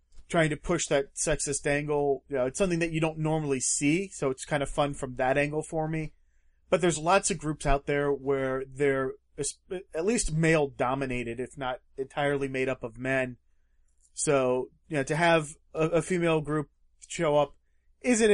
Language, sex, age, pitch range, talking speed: English, male, 30-49, 130-150 Hz, 175 wpm